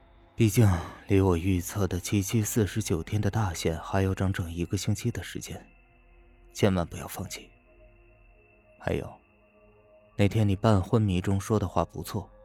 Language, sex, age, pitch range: Chinese, male, 20-39, 90-105 Hz